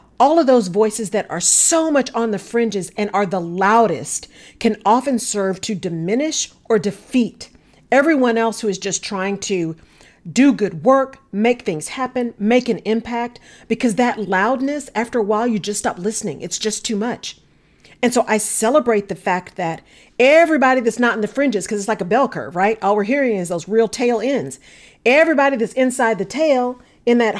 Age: 40-59